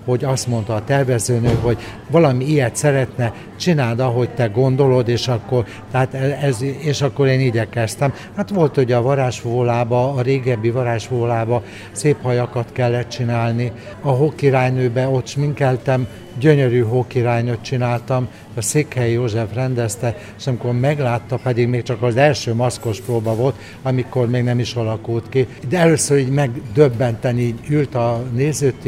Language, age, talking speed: Hungarian, 60-79, 145 wpm